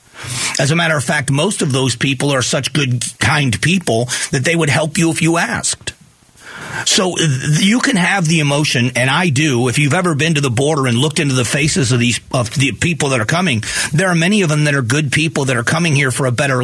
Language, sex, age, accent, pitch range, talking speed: English, male, 40-59, American, 130-160 Hz, 240 wpm